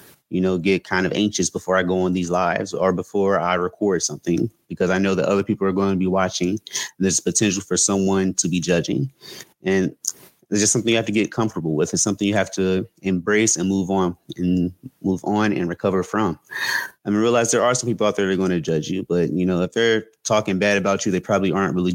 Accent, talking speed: American, 240 wpm